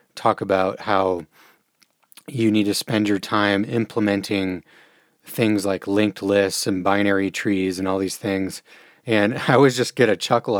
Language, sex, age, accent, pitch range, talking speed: English, male, 30-49, American, 95-115 Hz, 160 wpm